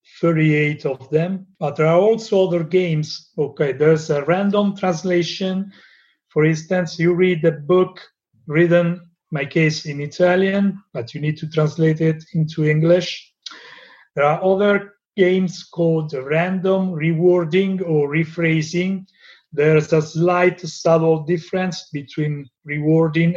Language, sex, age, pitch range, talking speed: English, male, 40-59, 150-175 Hz, 125 wpm